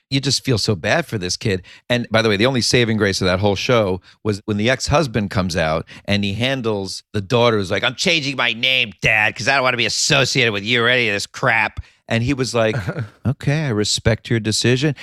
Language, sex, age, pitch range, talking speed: English, male, 40-59, 100-120 Hz, 245 wpm